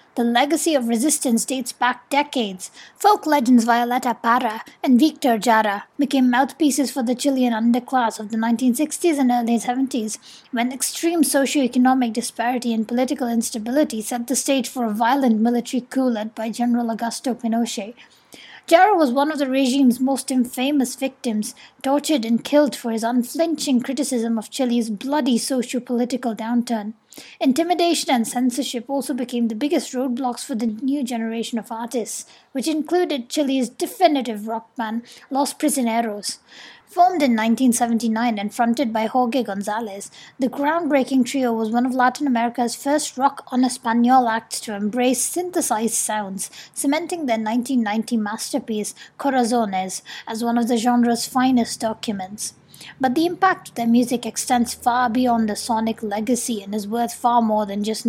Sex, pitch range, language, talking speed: female, 230-270 Hz, English, 145 wpm